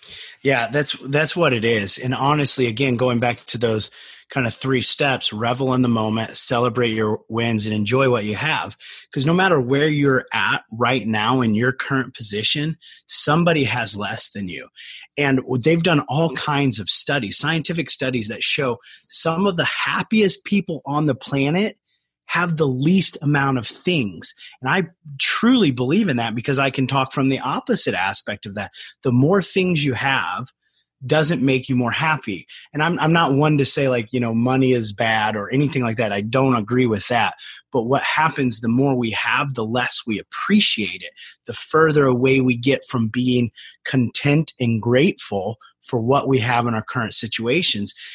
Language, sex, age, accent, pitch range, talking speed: English, male, 30-49, American, 120-150 Hz, 185 wpm